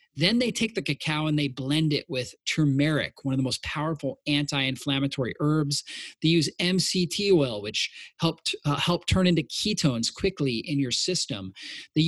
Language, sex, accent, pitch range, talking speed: English, male, American, 140-175 Hz, 165 wpm